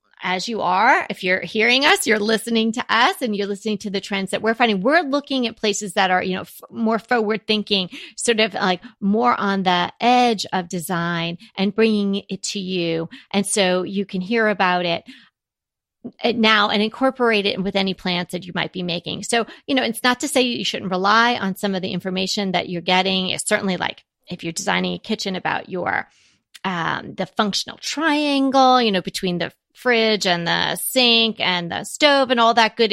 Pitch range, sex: 180-230 Hz, female